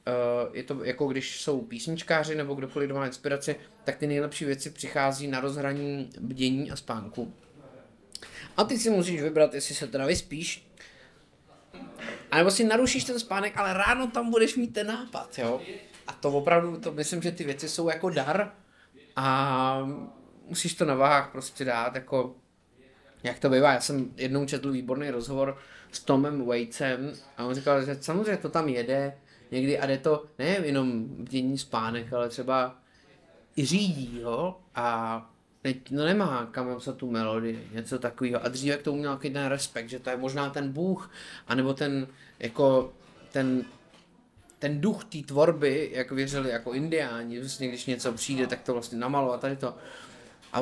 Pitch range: 125-150 Hz